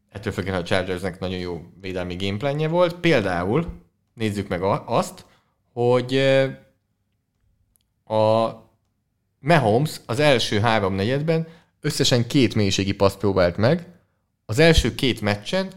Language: English